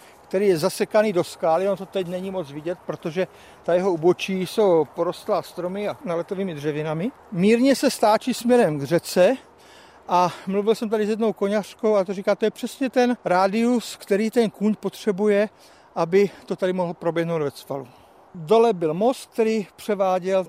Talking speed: 175 wpm